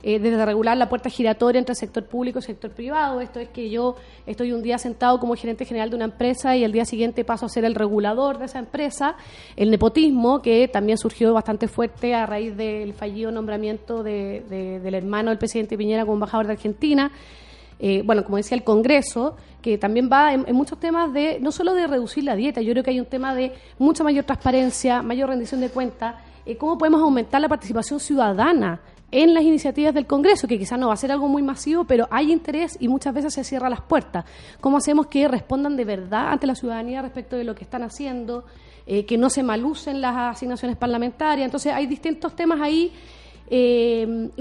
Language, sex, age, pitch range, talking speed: Spanish, female, 30-49, 225-280 Hz, 210 wpm